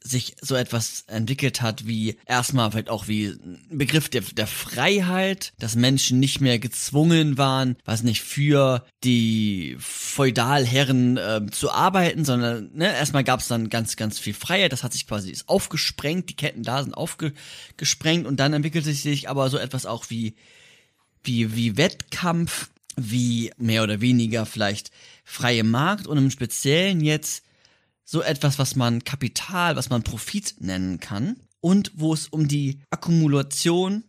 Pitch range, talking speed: 115-155 Hz, 155 wpm